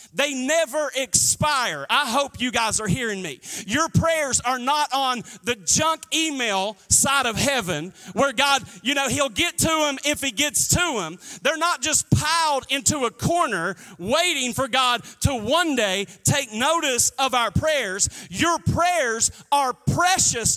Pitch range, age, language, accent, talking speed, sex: 210-315 Hz, 40-59, English, American, 165 wpm, male